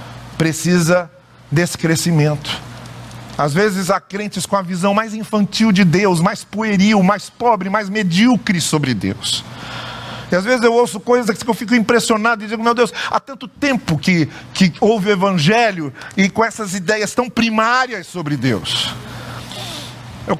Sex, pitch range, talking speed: male, 140-200 Hz, 155 wpm